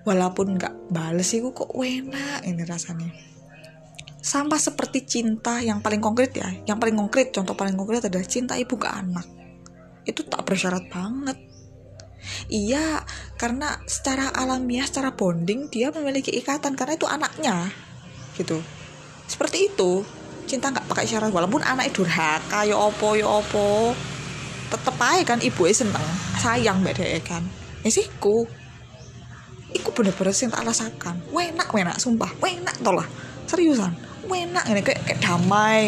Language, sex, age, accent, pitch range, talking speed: Indonesian, female, 20-39, native, 175-270 Hz, 135 wpm